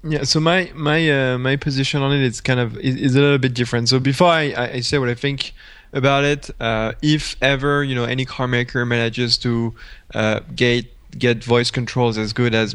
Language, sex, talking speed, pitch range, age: English, male, 210 wpm, 115-145 Hz, 20-39